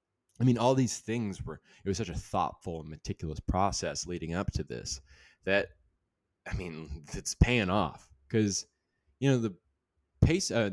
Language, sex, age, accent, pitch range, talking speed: English, male, 20-39, American, 85-105 Hz, 170 wpm